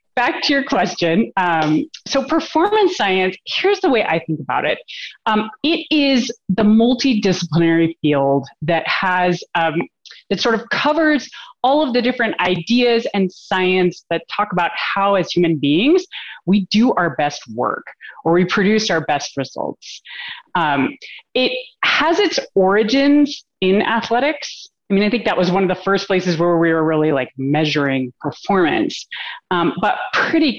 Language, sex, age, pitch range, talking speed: English, female, 30-49, 165-250 Hz, 160 wpm